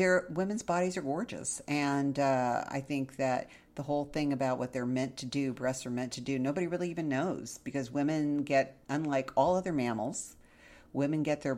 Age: 50-69